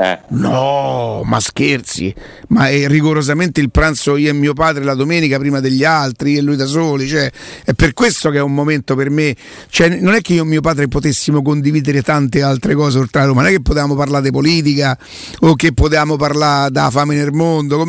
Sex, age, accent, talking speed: male, 50-69, native, 210 wpm